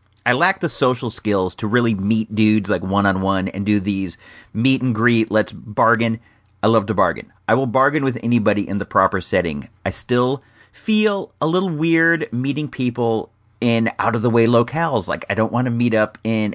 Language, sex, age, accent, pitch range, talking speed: English, male, 40-59, American, 100-135 Hz, 180 wpm